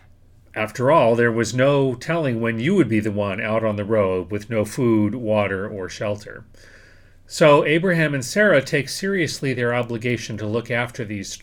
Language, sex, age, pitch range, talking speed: English, male, 40-59, 105-135 Hz, 180 wpm